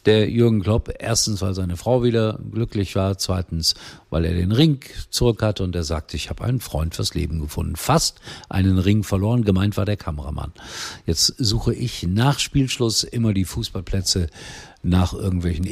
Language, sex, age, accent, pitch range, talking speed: German, male, 50-69, German, 90-125 Hz, 170 wpm